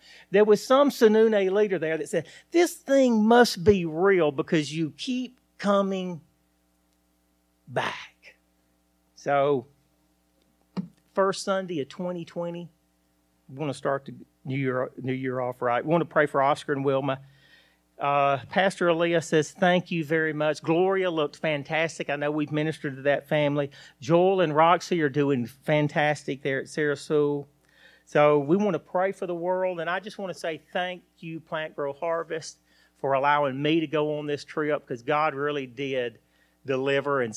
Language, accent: English, American